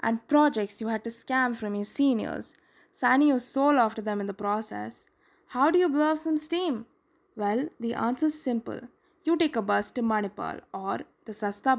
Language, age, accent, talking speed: English, 20-39, Indian, 190 wpm